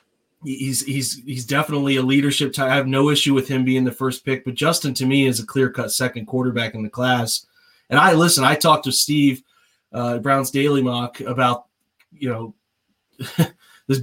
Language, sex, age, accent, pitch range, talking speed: English, male, 30-49, American, 130-150 Hz, 195 wpm